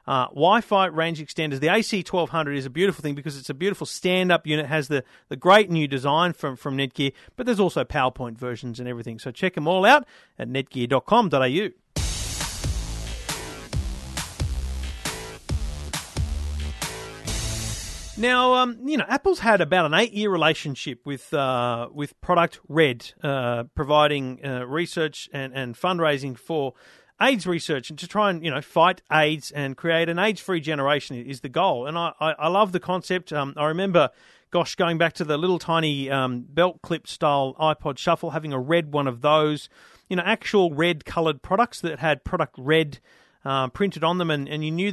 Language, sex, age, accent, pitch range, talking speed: English, male, 40-59, Australian, 135-175 Hz, 170 wpm